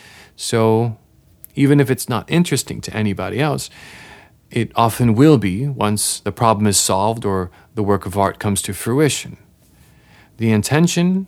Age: 40-59